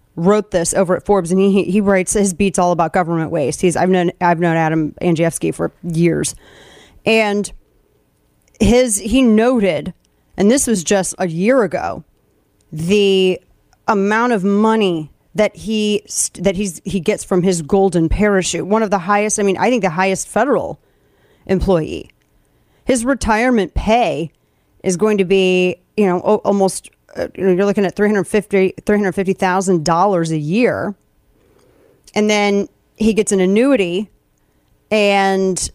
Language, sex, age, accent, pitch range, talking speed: English, female, 30-49, American, 175-210 Hz, 155 wpm